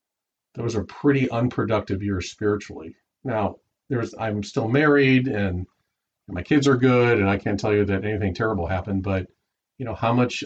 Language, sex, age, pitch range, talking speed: English, male, 40-59, 95-115 Hz, 180 wpm